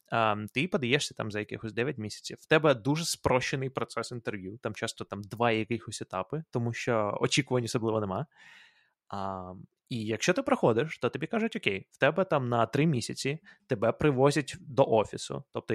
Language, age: Ukrainian, 20-39